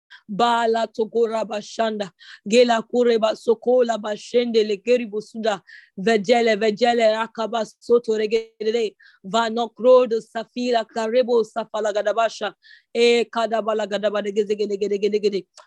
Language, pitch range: English, 205-235 Hz